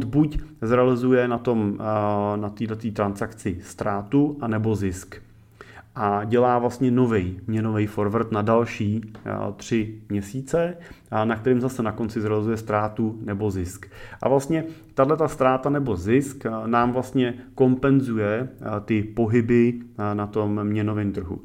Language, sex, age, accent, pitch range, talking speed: Czech, male, 30-49, native, 100-120 Hz, 130 wpm